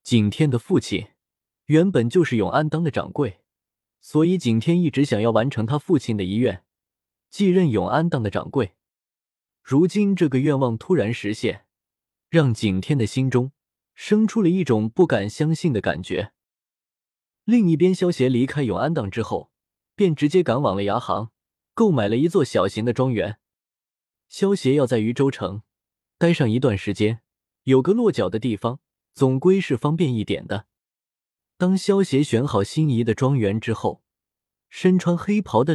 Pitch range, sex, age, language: 105-160 Hz, male, 20-39, Chinese